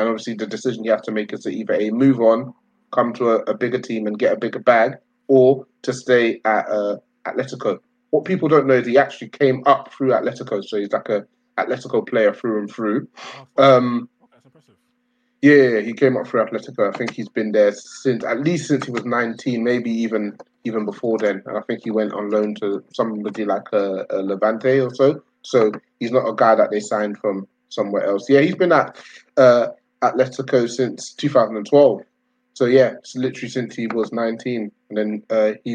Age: 20-39